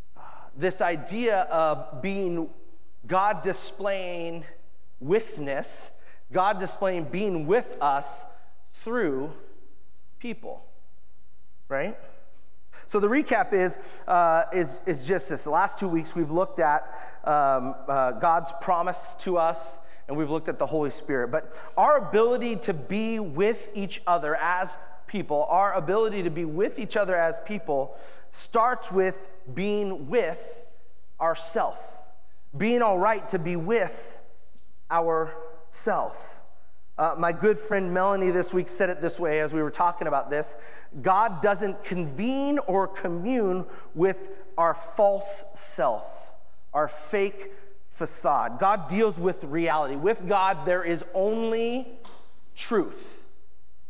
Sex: male